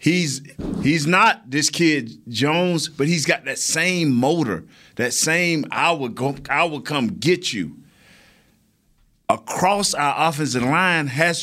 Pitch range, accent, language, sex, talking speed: 115-170 Hz, American, English, male, 140 wpm